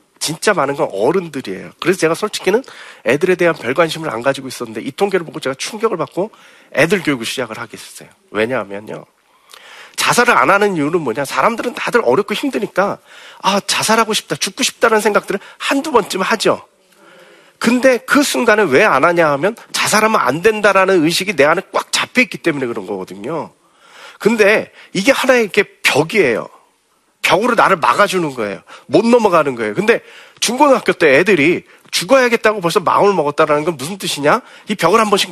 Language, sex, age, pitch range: Korean, male, 40-59, 140-220 Hz